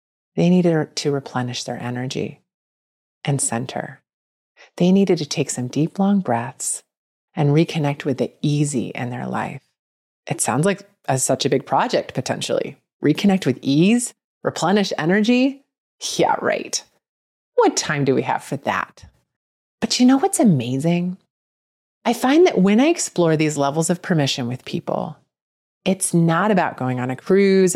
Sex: female